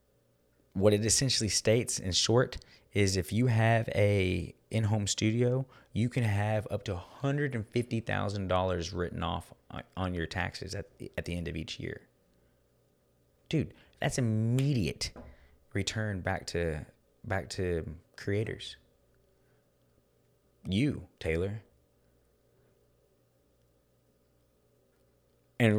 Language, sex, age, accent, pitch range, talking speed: English, male, 20-39, American, 80-105 Hz, 100 wpm